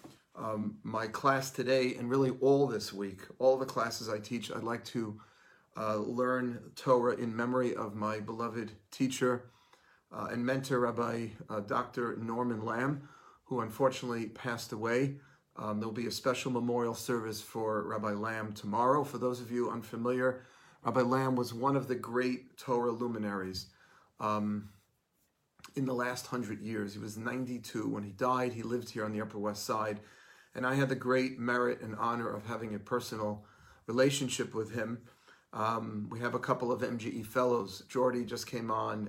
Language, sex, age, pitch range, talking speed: English, male, 40-59, 110-125 Hz, 170 wpm